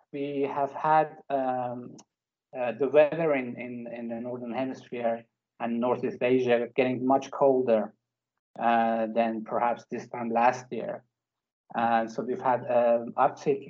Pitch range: 120-140 Hz